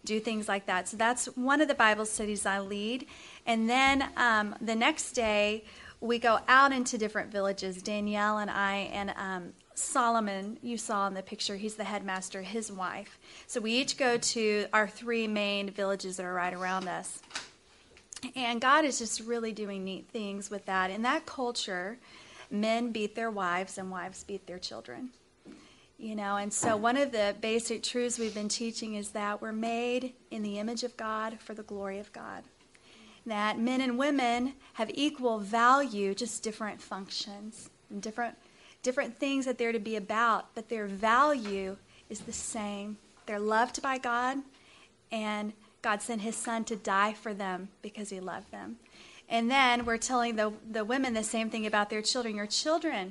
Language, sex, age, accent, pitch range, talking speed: English, female, 30-49, American, 205-240 Hz, 180 wpm